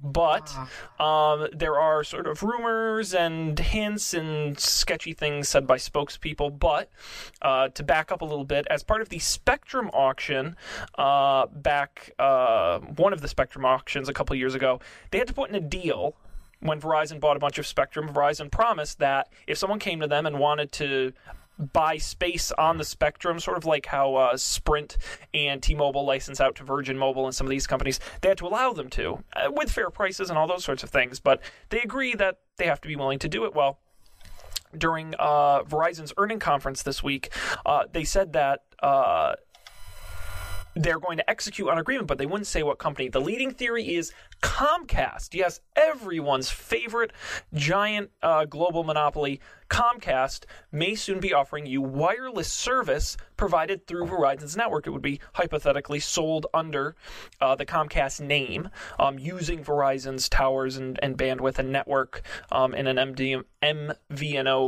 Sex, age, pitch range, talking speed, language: male, 20-39, 135-170 Hz, 175 wpm, English